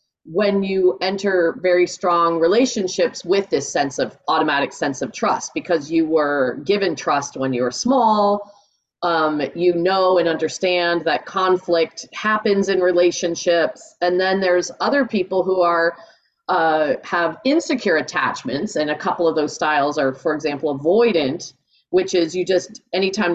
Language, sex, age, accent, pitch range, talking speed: English, female, 40-59, American, 155-195 Hz, 150 wpm